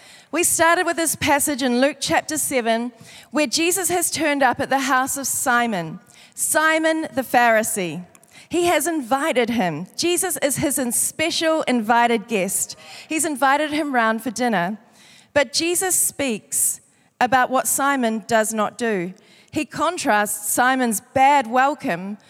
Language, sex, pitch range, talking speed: English, female, 225-290 Hz, 140 wpm